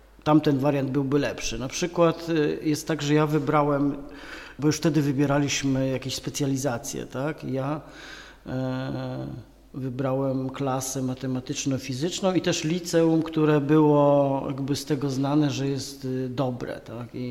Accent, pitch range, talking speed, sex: native, 130-150 Hz, 120 wpm, male